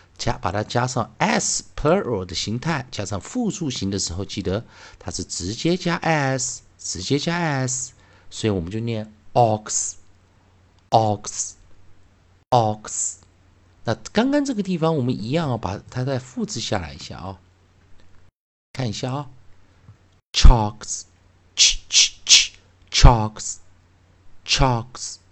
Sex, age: male, 50-69